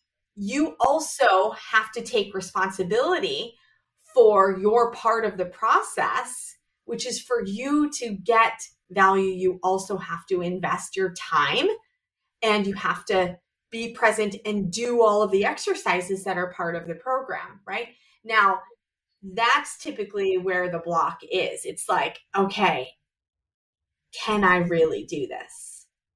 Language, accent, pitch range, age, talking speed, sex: English, American, 185-230 Hz, 30-49, 140 wpm, female